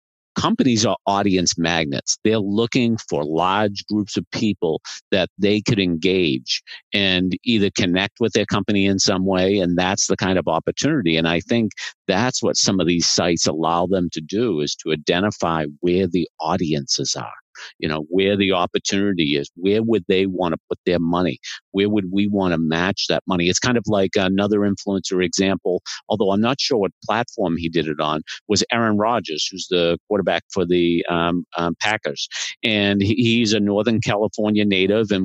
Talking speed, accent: 180 wpm, American